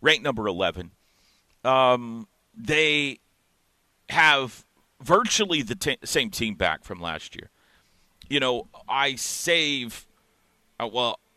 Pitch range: 105-130 Hz